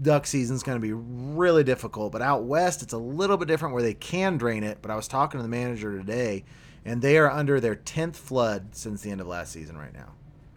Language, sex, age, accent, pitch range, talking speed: English, male, 30-49, American, 100-135 Hz, 250 wpm